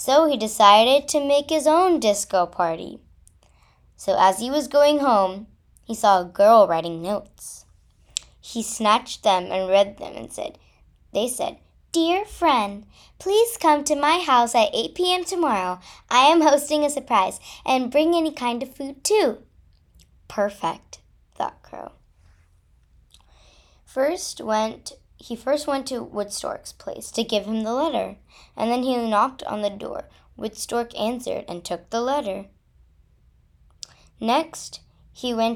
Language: English